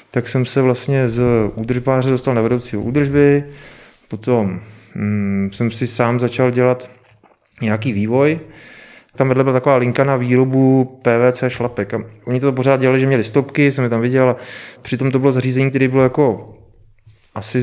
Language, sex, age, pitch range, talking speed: Czech, male, 30-49, 115-130 Hz, 160 wpm